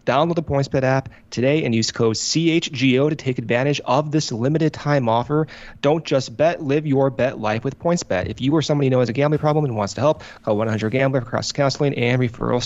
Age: 30-49